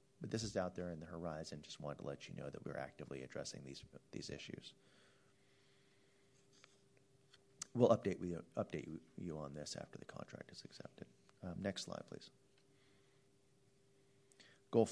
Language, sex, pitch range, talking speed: English, male, 85-110 Hz, 155 wpm